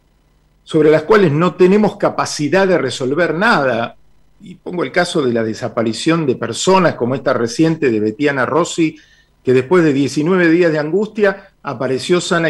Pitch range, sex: 120-165 Hz, male